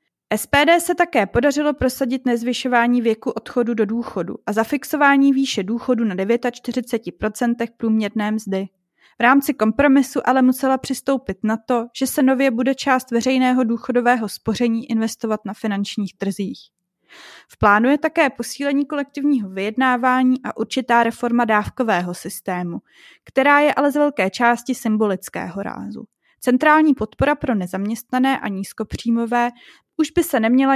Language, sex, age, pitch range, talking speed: Czech, female, 20-39, 220-265 Hz, 135 wpm